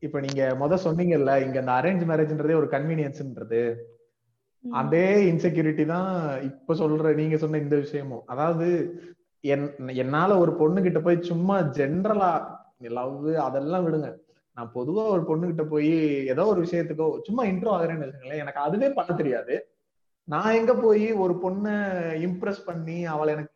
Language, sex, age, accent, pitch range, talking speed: Tamil, male, 30-49, native, 150-185 Hz, 110 wpm